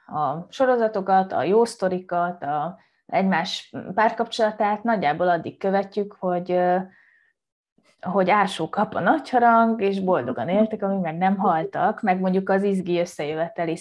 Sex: female